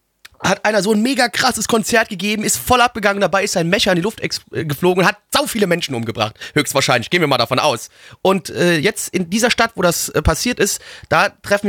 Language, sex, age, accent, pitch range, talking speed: German, male, 30-49, German, 170-215 Hz, 220 wpm